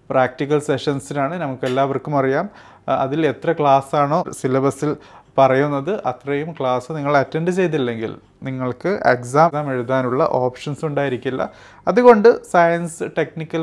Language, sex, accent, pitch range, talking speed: Malayalam, male, native, 135-165 Hz, 100 wpm